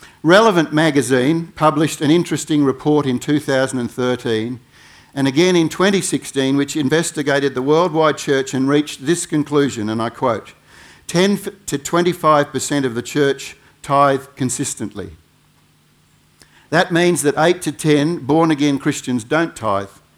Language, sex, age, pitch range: English, male, 60-79, 130-165 Hz